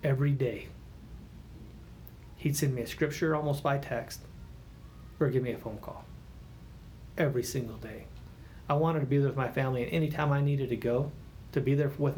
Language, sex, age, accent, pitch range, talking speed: English, male, 30-49, American, 115-145 Hz, 185 wpm